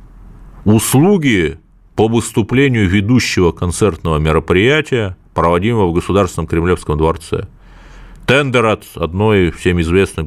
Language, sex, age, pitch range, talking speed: Russian, male, 40-59, 80-115 Hz, 95 wpm